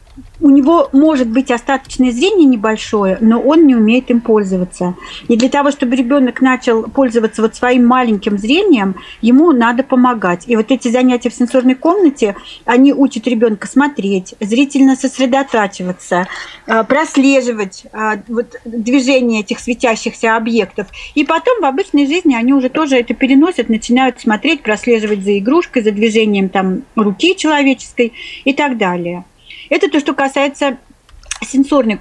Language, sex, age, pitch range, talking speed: Russian, female, 40-59, 220-275 Hz, 140 wpm